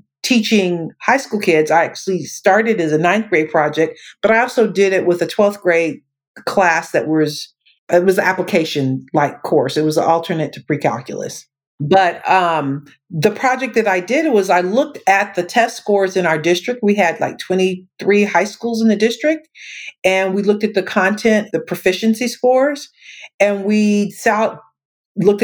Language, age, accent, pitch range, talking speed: English, 50-69, American, 170-210 Hz, 175 wpm